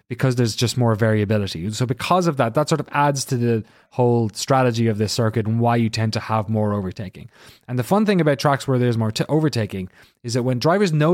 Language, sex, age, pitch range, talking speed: English, male, 30-49, 110-135 Hz, 230 wpm